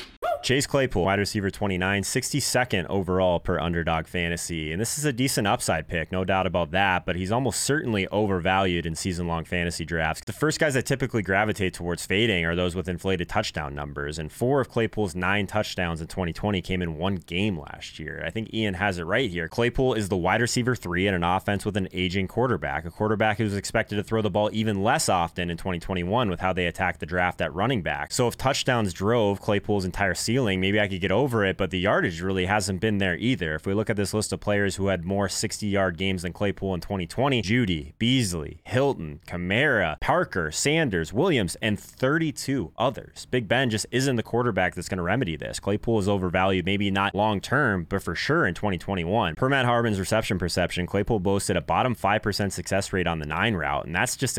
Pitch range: 90-110 Hz